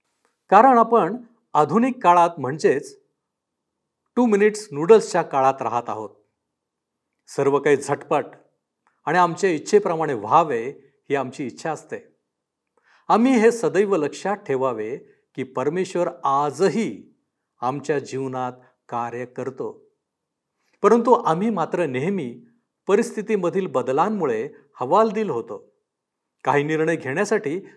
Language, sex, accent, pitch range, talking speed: Marathi, male, native, 145-235 Hz, 100 wpm